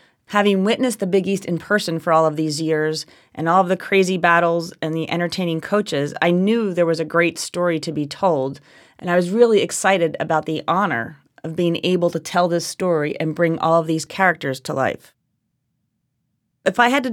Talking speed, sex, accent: 205 wpm, female, American